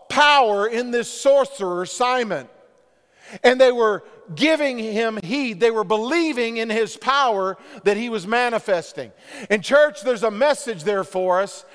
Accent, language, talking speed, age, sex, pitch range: American, English, 150 wpm, 50-69, male, 185-255 Hz